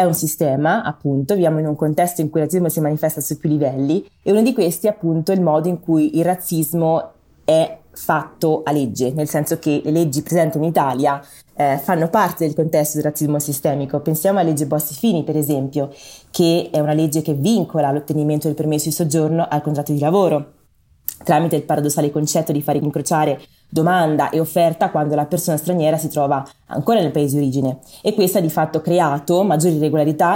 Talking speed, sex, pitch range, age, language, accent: 200 wpm, female, 150-170 Hz, 20-39, Italian, native